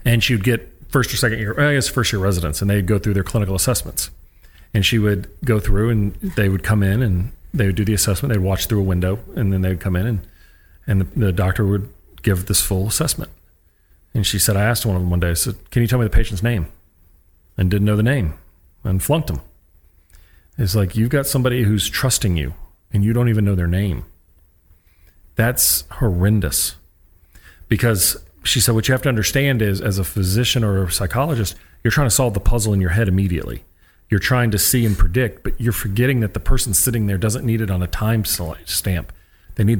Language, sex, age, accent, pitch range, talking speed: English, male, 40-59, American, 90-115 Hz, 220 wpm